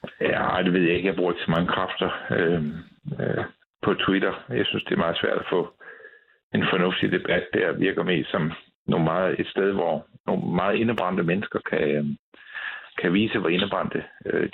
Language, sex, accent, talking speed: Danish, male, native, 190 wpm